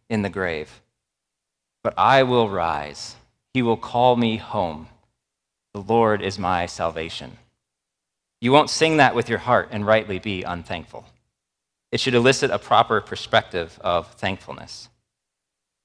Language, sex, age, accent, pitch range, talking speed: English, male, 40-59, American, 75-130 Hz, 135 wpm